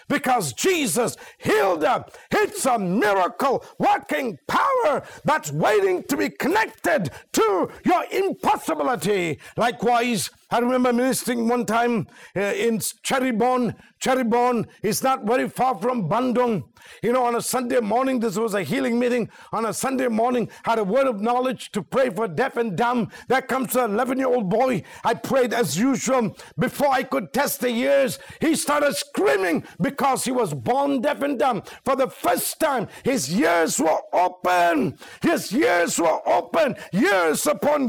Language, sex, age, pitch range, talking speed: English, male, 50-69, 195-260 Hz, 155 wpm